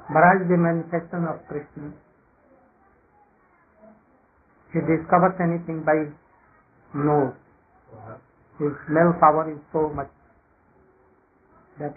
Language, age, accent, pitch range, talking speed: English, 60-79, Indian, 145-175 Hz, 85 wpm